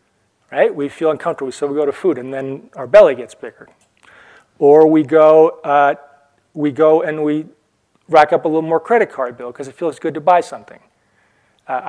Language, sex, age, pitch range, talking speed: English, male, 40-59, 135-165 Hz, 195 wpm